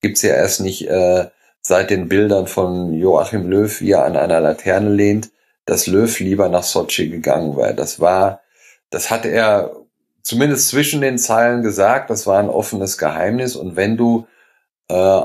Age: 40-59